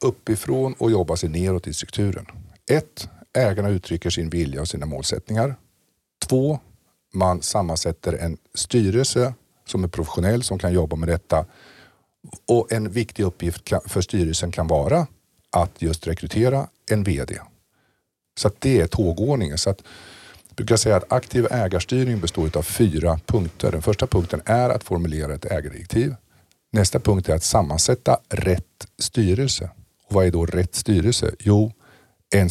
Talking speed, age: 140 wpm, 50-69